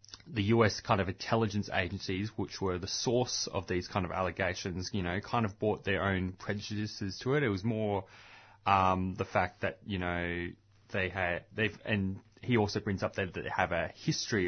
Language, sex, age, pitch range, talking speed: English, male, 20-39, 90-110 Hz, 195 wpm